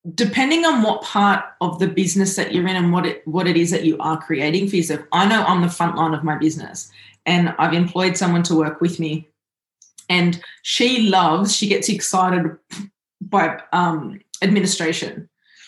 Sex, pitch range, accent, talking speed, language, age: female, 170-205 Hz, Australian, 185 wpm, English, 20-39